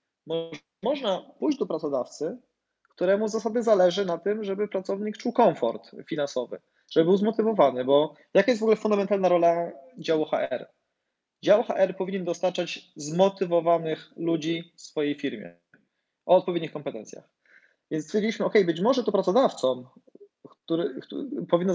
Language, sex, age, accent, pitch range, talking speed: Polish, male, 20-39, native, 165-210 Hz, 130 wpm